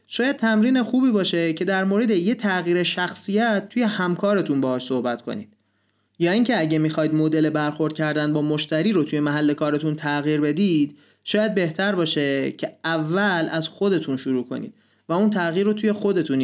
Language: Persian